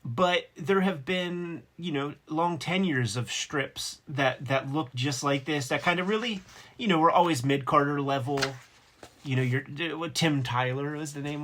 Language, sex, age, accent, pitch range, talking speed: English, male, 30-49, American, 130-155 Hz, 180 wpm